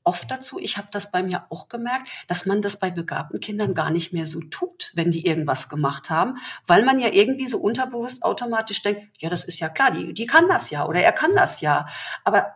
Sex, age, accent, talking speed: female, 40-59, German, 235 wpm